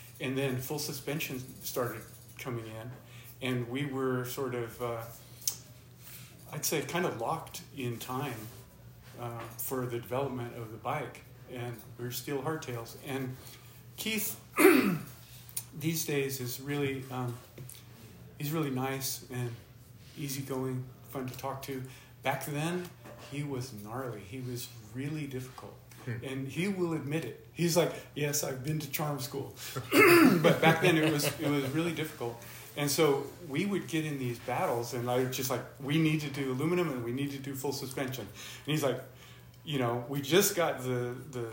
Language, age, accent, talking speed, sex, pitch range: English, 40-59, American, 165 wpm, male, 120-145 Hz